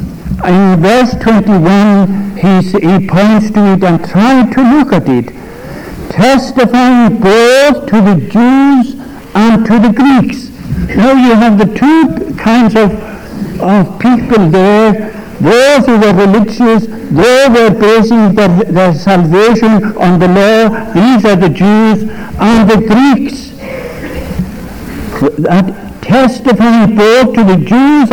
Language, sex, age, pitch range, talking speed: English, male, 60-79, 185-230 Hz, 125 wpm